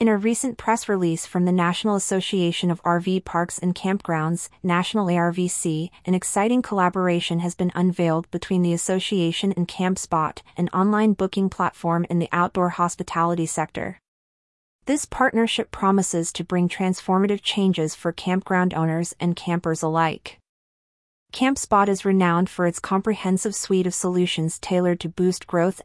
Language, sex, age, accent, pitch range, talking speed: English, female, 30-49, American, 170-195 Hz, 145 wpm